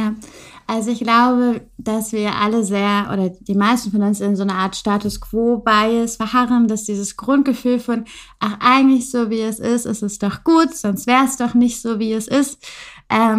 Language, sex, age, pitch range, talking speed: German, female, 20-39, 200-230 Hz, 195 wpm